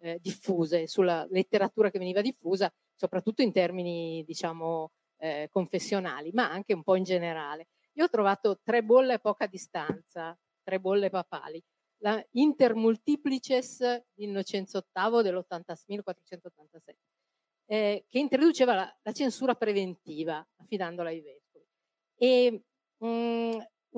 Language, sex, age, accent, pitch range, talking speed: Italian, female, 40-59, native, 180-235 Hz, 120 wpm